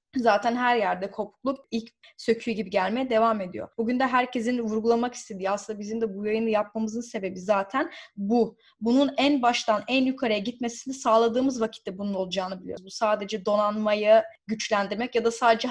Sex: female